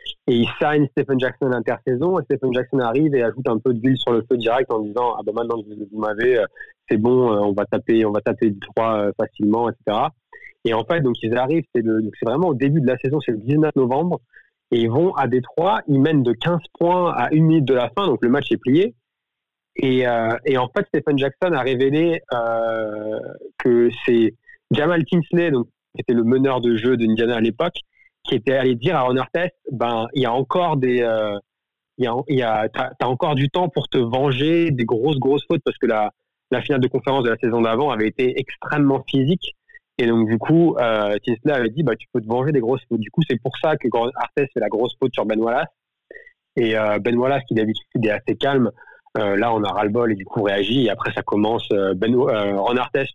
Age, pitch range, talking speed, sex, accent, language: 30-49, 115-150 Hz, 235 wpm, male, French, French